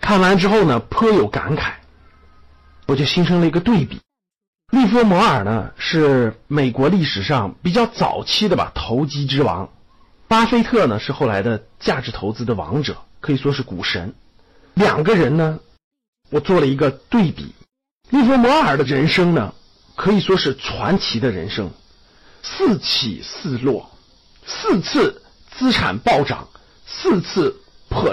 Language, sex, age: Chinese, male, 50-69